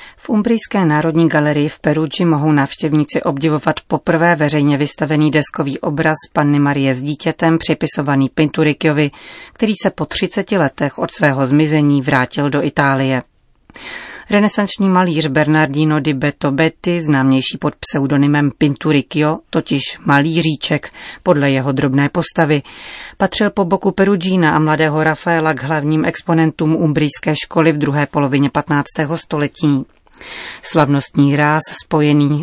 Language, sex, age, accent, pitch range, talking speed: Czech, female, 30-49, native, 145-175 Hz, 125 wpm